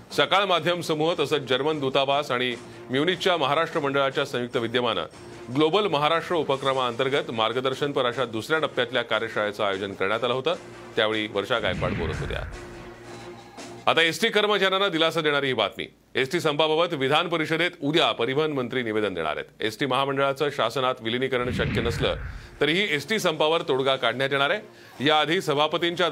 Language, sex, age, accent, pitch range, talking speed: Marathi, male, 30-49, native, 120-160 Hz, 125 wpm